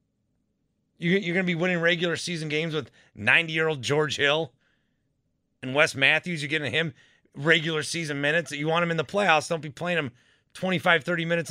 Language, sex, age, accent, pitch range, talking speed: English, male, 30-49, American, 120-175 Hz, 175 wpm